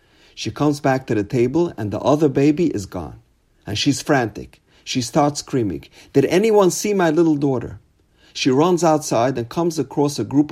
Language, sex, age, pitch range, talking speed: English, male, 50-69, 105-150 Hz, 185 wpm